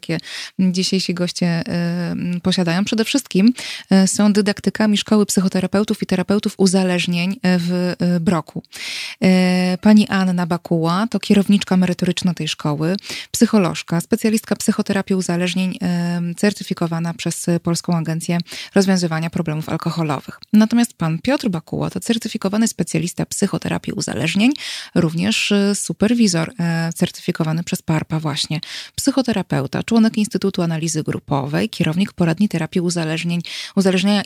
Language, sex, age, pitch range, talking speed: Polish, female, 20-39, 170-205 Hz, 105 wpm